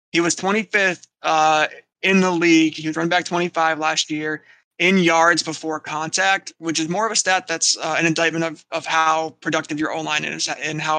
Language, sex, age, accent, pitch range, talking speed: English, male, 20-39, American, 155-175 Hz, 200 wpm